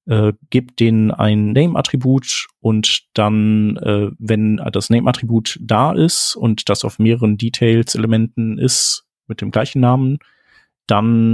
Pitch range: 105-125 Hz